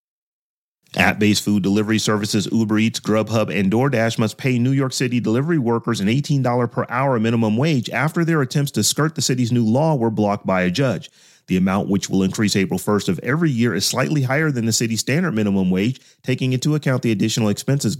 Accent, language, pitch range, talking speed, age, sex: American, English, 110-135 Hz, 205 wpm, 30-49, male